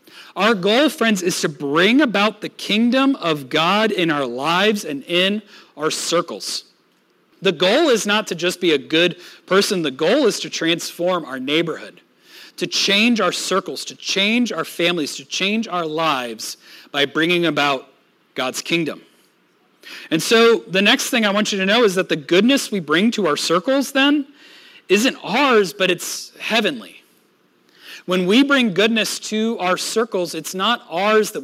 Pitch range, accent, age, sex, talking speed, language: 165-220 Hz, American, 40-59, male, 170 wpm, English